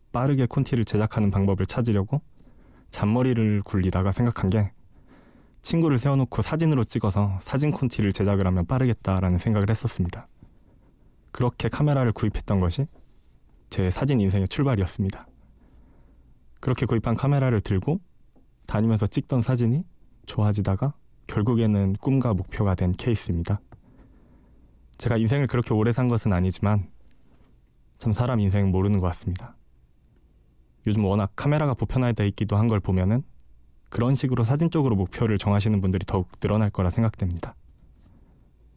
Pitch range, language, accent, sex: 95-120 Hz, Korean, native, male